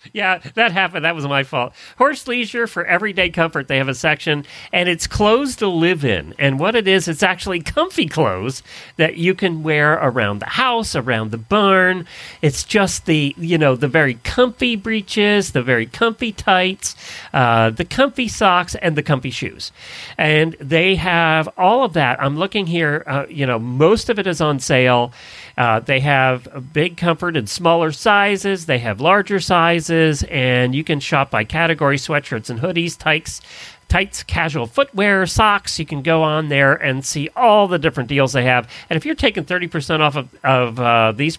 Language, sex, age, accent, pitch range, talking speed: English, male, 40-59, American, 130-180 Hz, 185 wpm